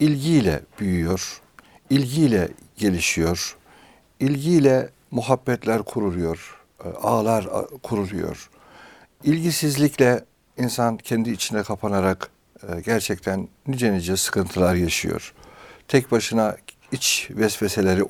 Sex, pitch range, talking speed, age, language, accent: male, 95-130 Hz, 75 wpm, 60-79, Turkish, native